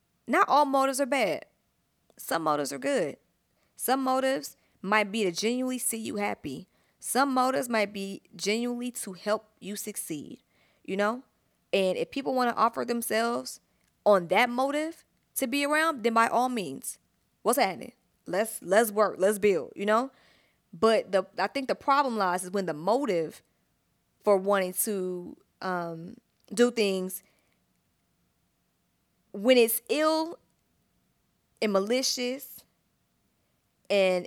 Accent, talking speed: American, 135 wpm